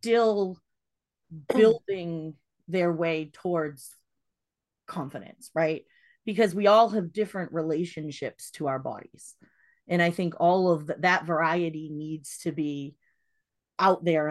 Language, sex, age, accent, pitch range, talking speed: English, female, 30-49, American, 155-205 Hz, 115 wpm